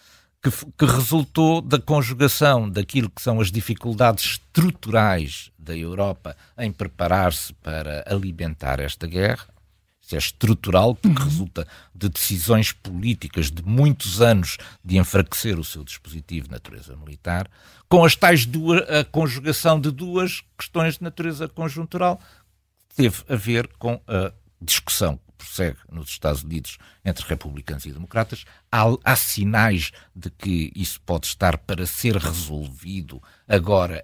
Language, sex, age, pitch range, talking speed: Portuguese, male, 60-79, 85-115 Hz, 130 wpm